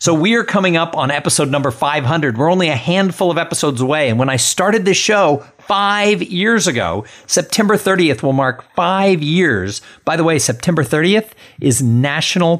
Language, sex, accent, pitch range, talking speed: English, male, American, 125-175 Hz, 180 wpm